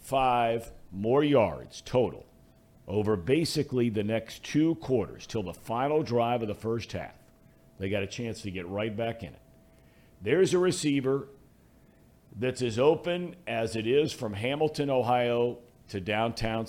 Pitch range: 110-135 Hz